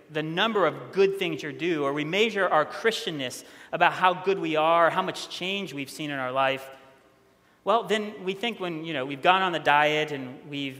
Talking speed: 215 wpm